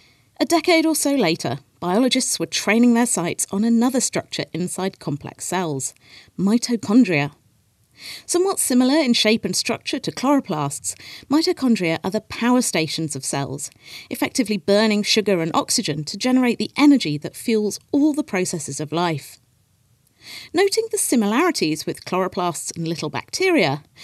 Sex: female